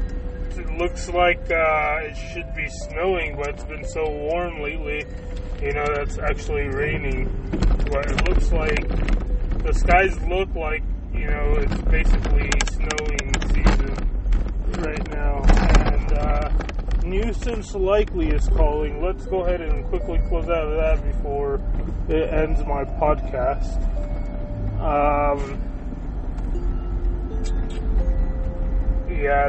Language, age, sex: English, 20-39, male